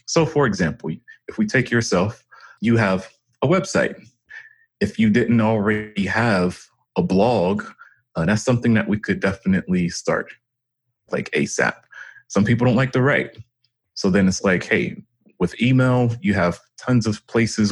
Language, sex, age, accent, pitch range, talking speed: English, male, 30-49, American, 105-130 Hz, 155 wpm